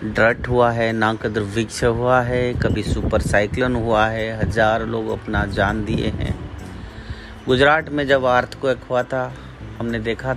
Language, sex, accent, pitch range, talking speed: Hindi, male, native, 100-140 Hz, 160 wpm